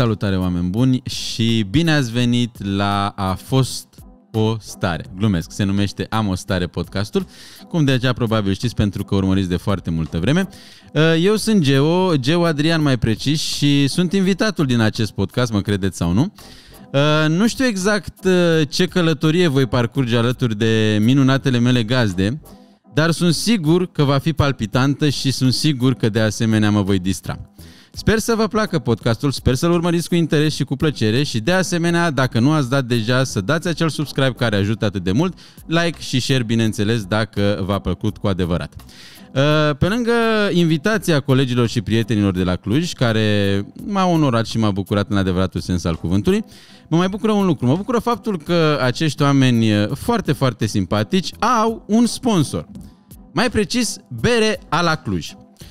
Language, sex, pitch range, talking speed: Romanian, male, 105-165 Hz, 170 wpm